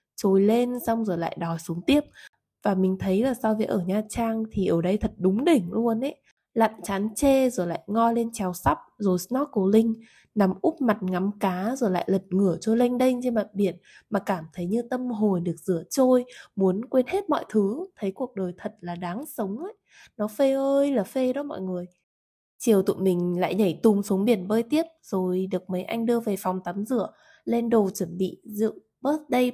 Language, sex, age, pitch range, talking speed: Vietnamese, female, 20-39, 185-245 Hz, 215 wpm